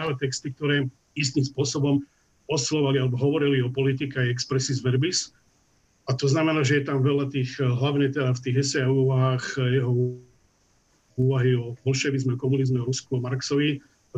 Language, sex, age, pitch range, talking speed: Slovak, male, 50-69, 130-145 Hz, 160 wpm